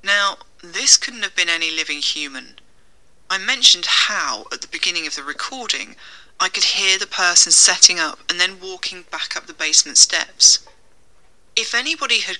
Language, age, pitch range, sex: English, 30-49, 145-195 Hz, female